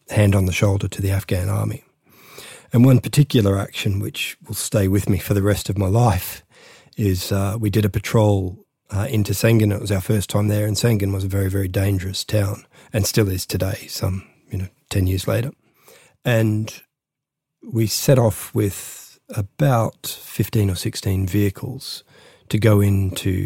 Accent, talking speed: Australian, 175 wpm